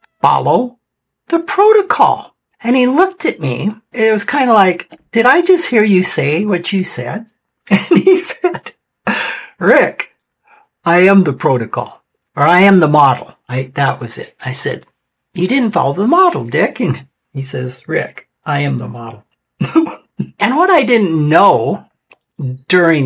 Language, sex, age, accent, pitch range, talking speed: English, male, 60-79, American, 130-190 Hz, 160 wpm